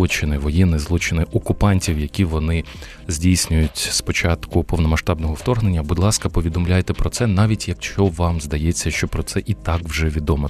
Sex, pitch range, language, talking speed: male, 80-95 Hz, Ukrainian, 150 wpm